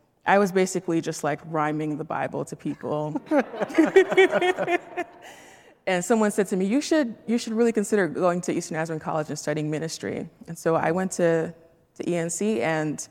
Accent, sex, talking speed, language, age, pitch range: American, female, 170 wpm, English, 20-39, 150-200 Hz